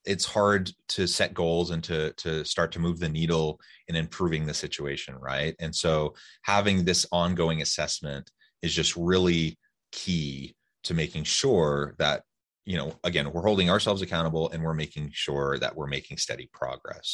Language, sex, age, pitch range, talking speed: English, male, 30-49, 75-90 Hz, 170 wpm